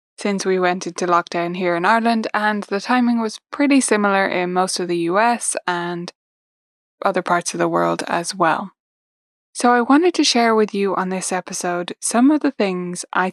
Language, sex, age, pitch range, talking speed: English, female, 10-29, 180-235 Hz, 190 wpm